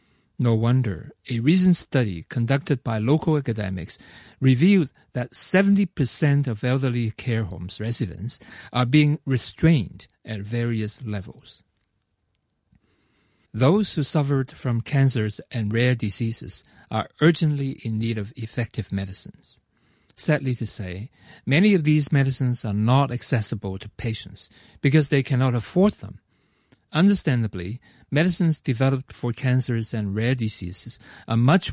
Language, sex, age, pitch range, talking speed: English, male, 40-59, 105-140 Hz, 125 wpm